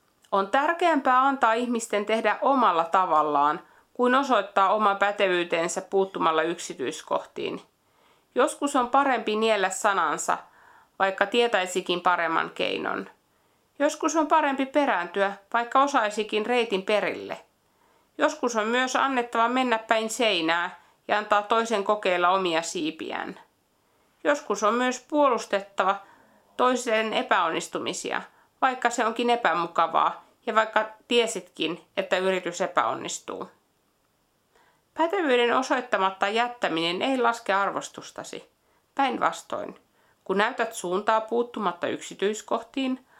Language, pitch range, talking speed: Finnish, 190-255 Hz, 100 wpm